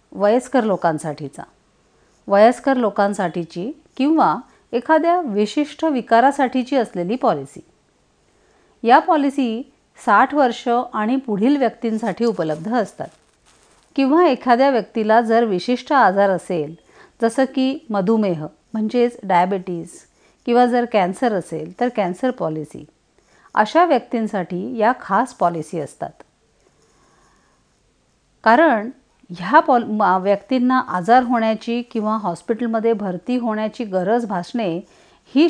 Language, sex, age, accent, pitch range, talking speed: Marathi, female, 50-69, native, 195-260 Hz, 95 wpm